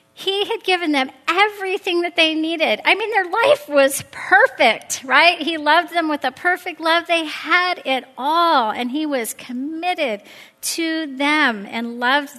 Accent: American